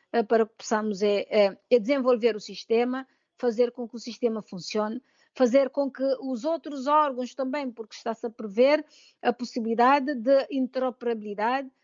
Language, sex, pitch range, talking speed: Portuguese, female, 225-265 Hz, 150 wpm